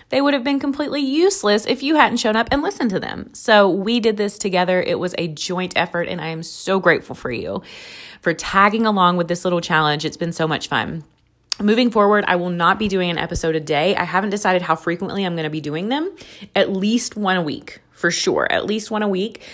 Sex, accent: female, American